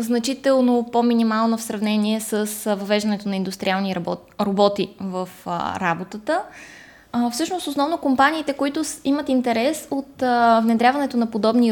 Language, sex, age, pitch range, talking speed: Bulgarian, female, 20-39, 220-265 Hz, 110 wpm